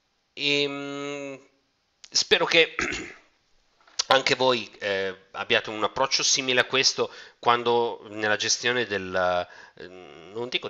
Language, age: Italian, 40-59